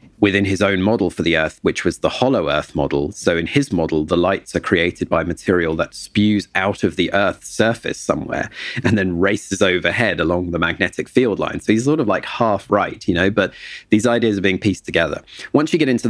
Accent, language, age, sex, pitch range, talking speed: British, English, 30-49, male, 90-110 Hz, 225 wpm